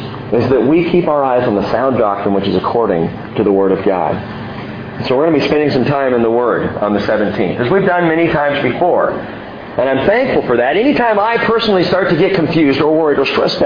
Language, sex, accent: English, male, American